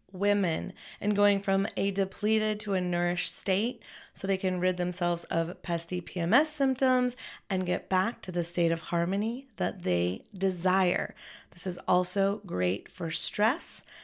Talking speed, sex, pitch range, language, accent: 155 wpm, female, 180-230 Hz, English, American